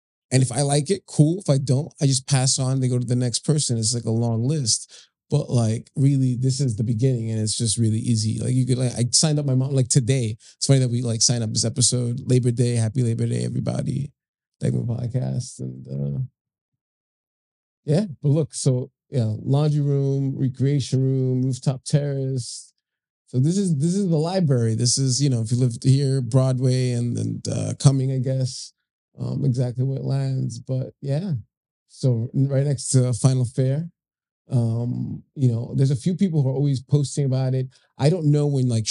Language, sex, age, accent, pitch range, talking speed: English, male, 20-39, American, 120-135 Hz, 200 wpm